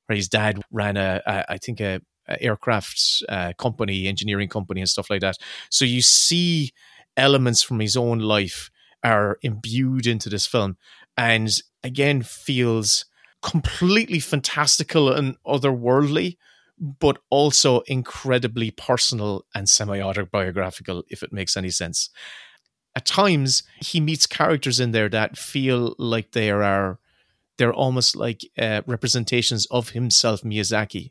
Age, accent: 30-49, Irish